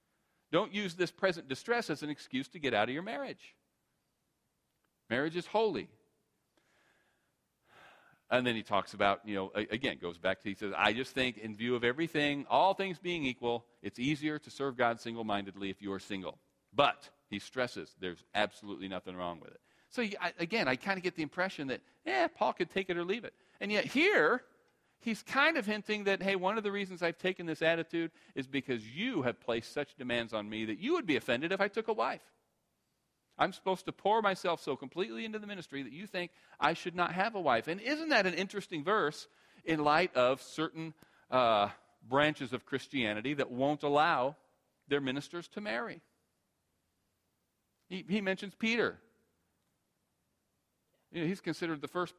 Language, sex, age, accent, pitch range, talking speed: English, male, 40-59, American, 120-195 Hz, 185 wpm